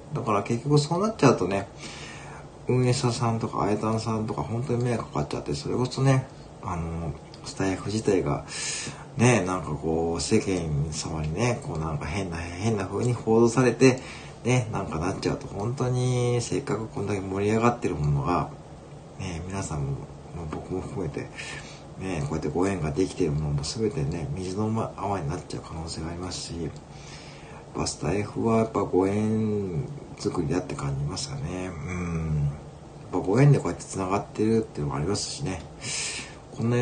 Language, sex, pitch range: Japanese, male, 90-125 Hz